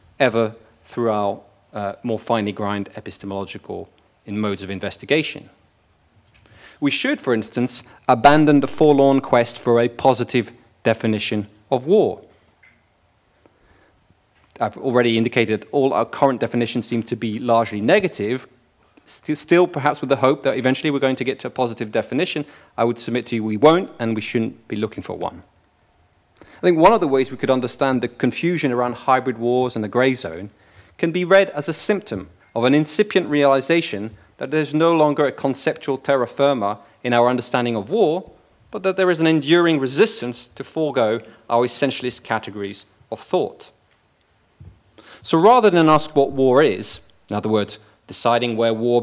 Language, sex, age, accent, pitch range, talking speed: Dutch, male, 30-49, British, 105-135 Hz, 170 wpm